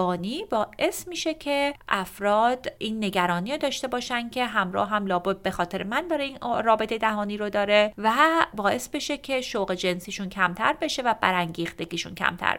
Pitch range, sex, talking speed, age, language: 180-235 Hz, female, 155 wpm, 30-49, Persian